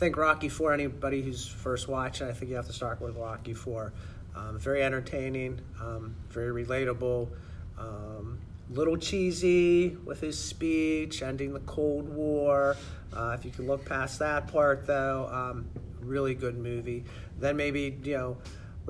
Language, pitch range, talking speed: English, 110-140 Hz, 160 wpm